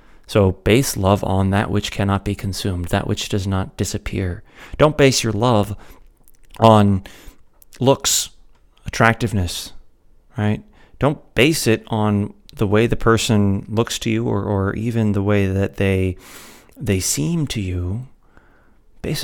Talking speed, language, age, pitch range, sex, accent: 140 wpm, English, 30-49, 100-130 Hz, male, American